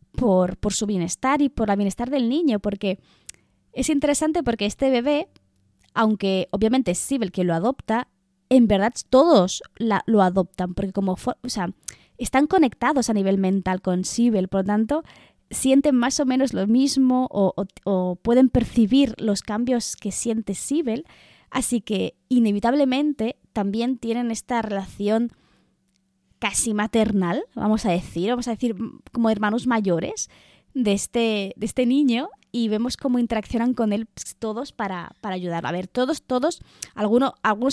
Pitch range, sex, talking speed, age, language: 190-250 Hz, female, 160 wpm, 20-39, Spanish